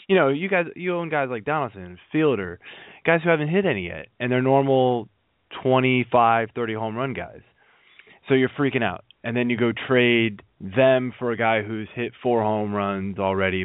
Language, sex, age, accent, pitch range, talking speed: English, male, 20-39, American, 100-125 Hz, 190 wpm